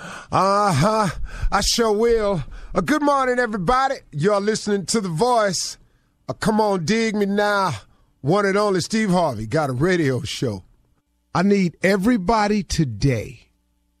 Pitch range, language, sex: 120-195 Hz, English, male